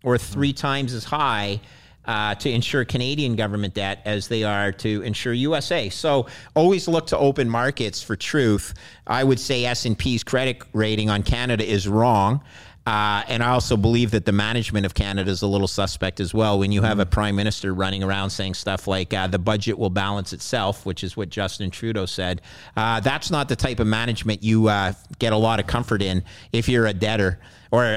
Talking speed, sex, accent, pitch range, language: 200 wpm, male, American, 100-115 Hz, English